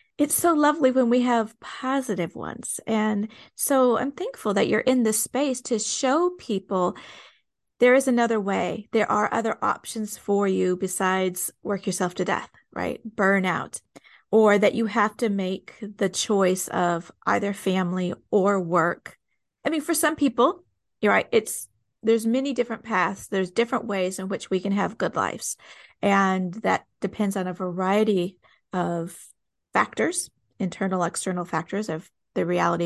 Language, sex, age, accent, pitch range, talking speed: English, female, 40-59, American, 185-235 Hz, 155 wpm